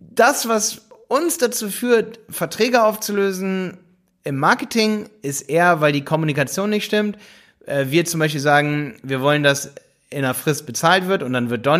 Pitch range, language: 130-180 Hz, German